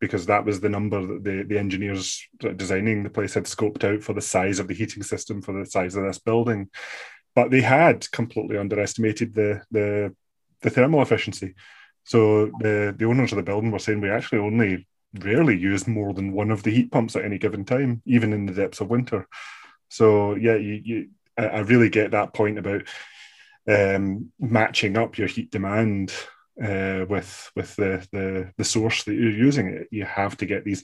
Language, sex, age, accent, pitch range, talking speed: English, male, 20-39, British, 100-110 Hz, 195 wpm